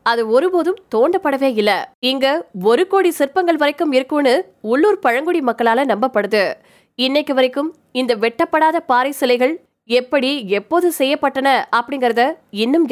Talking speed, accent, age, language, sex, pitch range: 70 wpm, native, 20-39, Tamil, female, 240-315 Hz